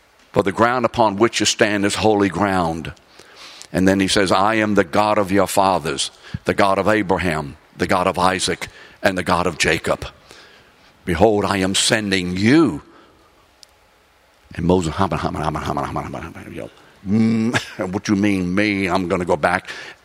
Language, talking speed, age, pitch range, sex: English, 155 wpm, 60-79, 85-110 Hz, male